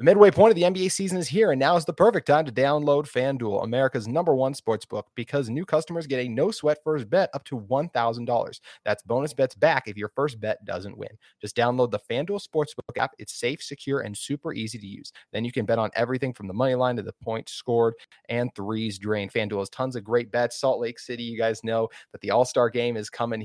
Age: 30-49